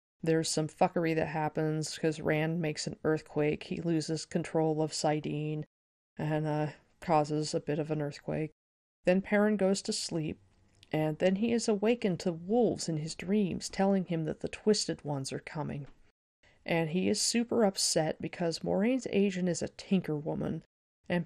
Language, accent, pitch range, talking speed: English, American, 160-205 Hz, 165 wpm